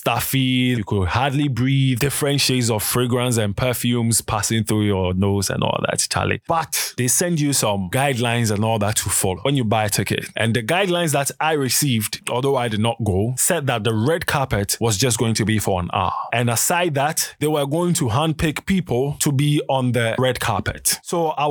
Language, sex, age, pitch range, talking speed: English, male, 20-39, 110-140 Hz, 210 wpm